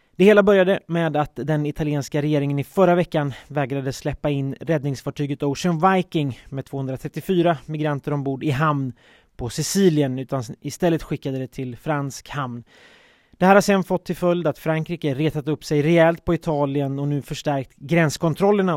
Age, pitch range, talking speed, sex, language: 30-49, 135-165 Hz, 165 wpm, male, Swedish